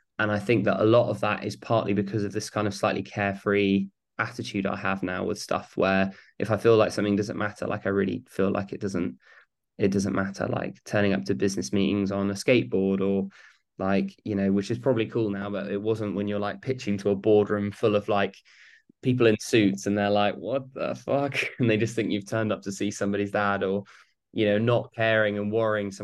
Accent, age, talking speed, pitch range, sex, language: British, 20-39, 230 wpm, 100-110 Hz, male, English